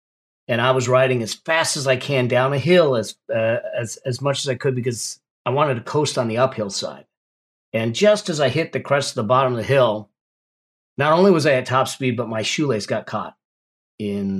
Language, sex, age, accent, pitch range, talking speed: English, male, 40-59, American, 110-140 Hz, 230 wpm